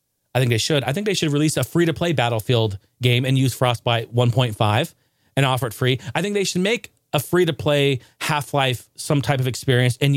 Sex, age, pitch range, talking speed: male, 30-49, 125-185 Hz, 200 wpm